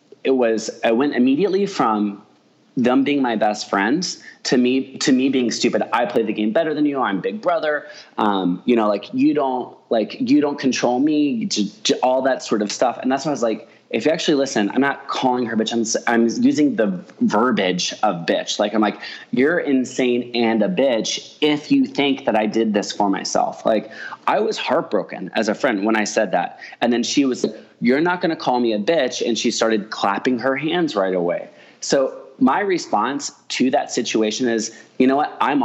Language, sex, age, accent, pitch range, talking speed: English, male, 20-39, American, 110-145 Hz, 210 wpm